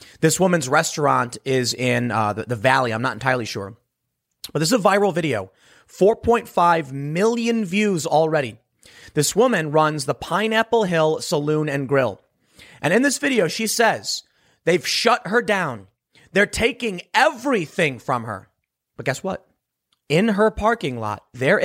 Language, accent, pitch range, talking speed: English, American, 125-205 Hz, 150 wpm